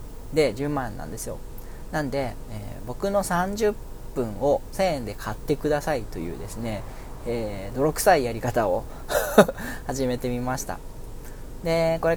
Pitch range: 120-155 Hz